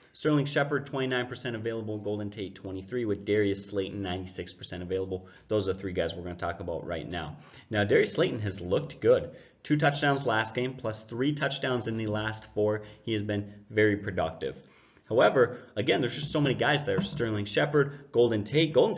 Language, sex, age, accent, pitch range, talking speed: English, male, 30-49, American, 105-135 Hz, 185 wpm